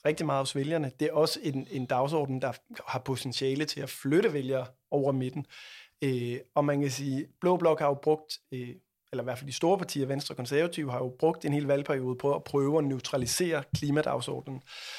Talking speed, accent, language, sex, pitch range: 210 wpm, native, Danish, male, 135-155 Hz